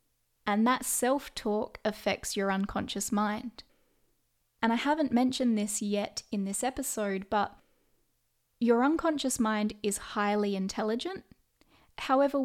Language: English